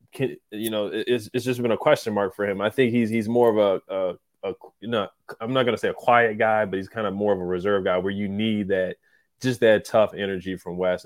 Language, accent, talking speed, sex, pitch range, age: English, American, 255 wpm, male, 95-115 Hz, 20-39